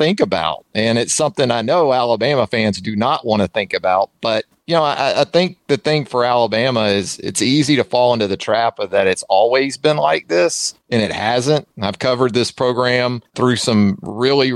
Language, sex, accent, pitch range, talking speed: English, male, American, 105-125 Hz, 205 wpm